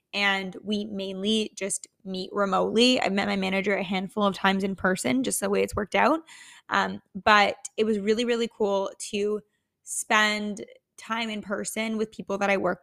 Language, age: English, 10-29